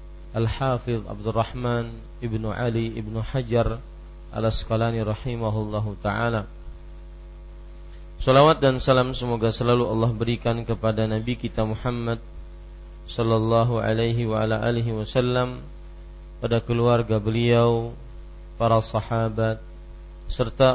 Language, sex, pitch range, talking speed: Malay, male, 100-120 Hz, 95 wpm